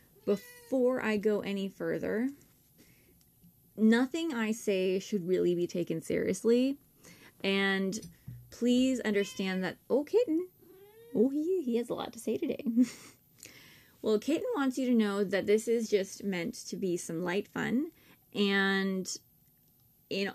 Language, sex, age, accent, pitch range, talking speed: English, female, 20-39, American, 195-245 Hz, 135 wpm